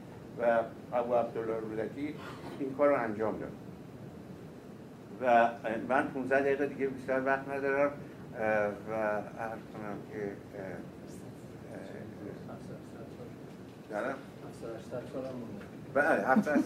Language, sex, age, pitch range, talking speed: Persian, male, 60-79, 130-165 Hz, 85 wpm